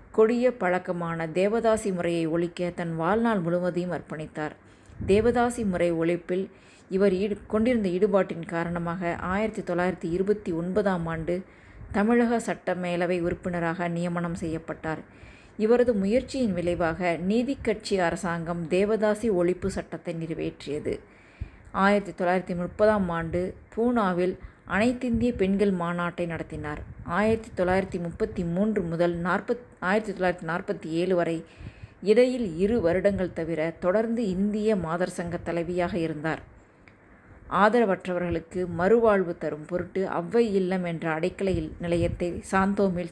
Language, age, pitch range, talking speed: Tamil, 20-39, 170-205 Hz, 95 wpm